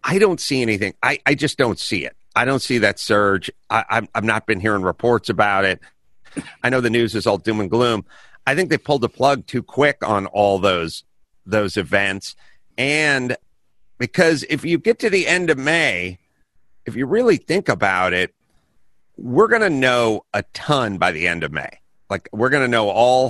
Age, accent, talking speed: 50-69, American, 205 wpm